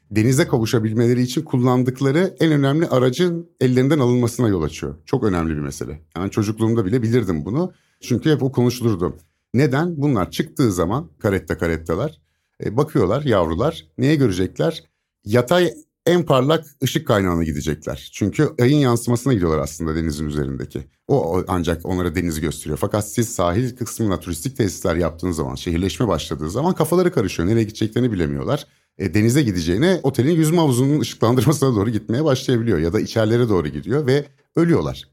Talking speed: 145 wpm